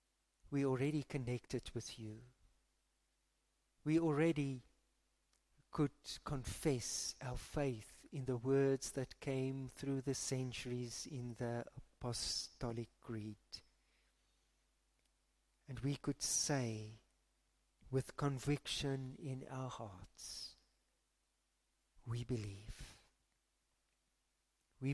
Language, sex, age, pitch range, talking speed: English, male, 50-69, 85-135 Hz, 85 wpm